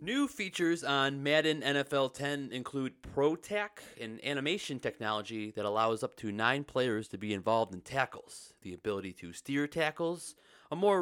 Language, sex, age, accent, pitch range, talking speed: English, male, 30-49, American, 120-175 Hz, 160 wpm